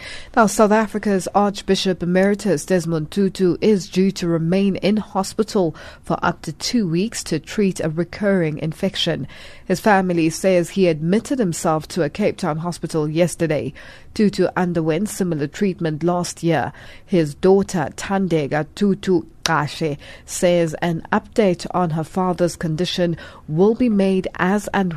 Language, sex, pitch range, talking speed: English, female, 165-195 Hz, 140 wpm